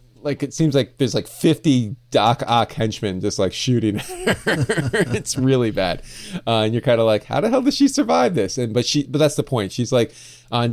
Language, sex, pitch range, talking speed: English, male, 110-130 Hz, 225 wpm